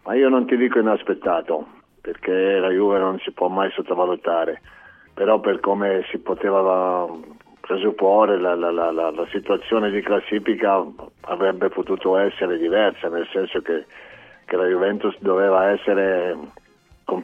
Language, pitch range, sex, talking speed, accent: Italian, 95-130 Hz, male, 140 wpm, native